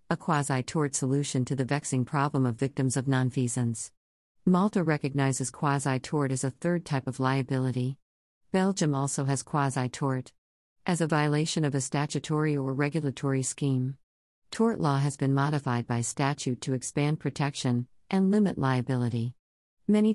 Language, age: English, 50-69